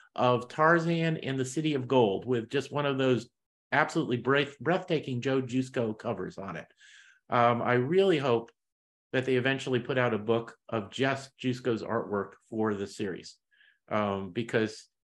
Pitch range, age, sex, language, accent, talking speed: 120-150 Hz, 50-69, male, English, American, 155 wpm